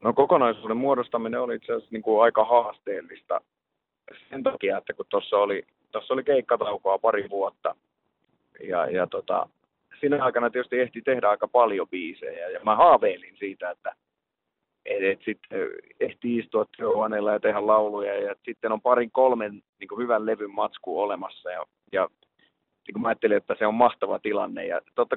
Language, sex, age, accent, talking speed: Finnish, male, 30-49, native, 160 wpm